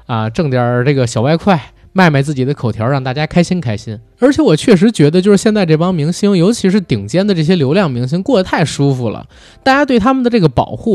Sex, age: male, 20-39